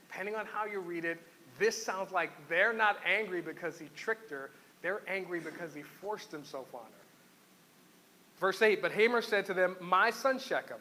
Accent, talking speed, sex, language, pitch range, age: American, 190 wpm, male, English, 165-220 Hz, 40-59